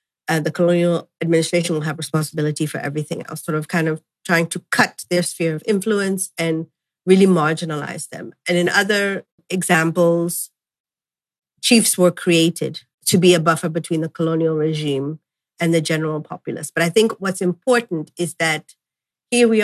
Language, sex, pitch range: English, female, 165-190 Hz